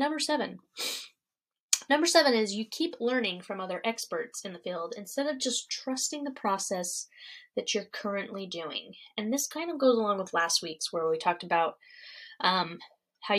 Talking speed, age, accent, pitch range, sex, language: 175 wpm, 10-29, American, 195-260 Hz, female, English